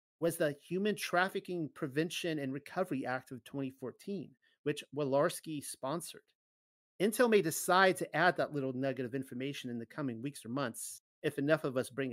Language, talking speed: English, 170 wpm